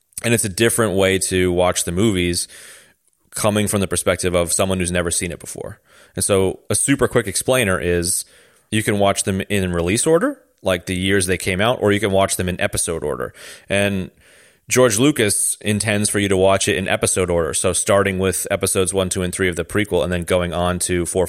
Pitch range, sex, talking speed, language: 90-105 Hz, male, 215 wpm, English